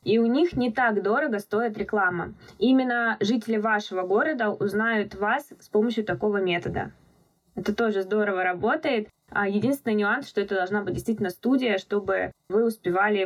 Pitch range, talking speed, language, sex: 205-245 Hz, 150 wpm, Russian, female